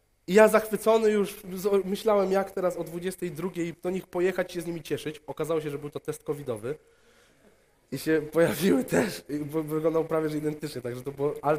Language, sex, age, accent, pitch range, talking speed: Polish, male, 20-39, native, 125-195 Hz, 185 wpm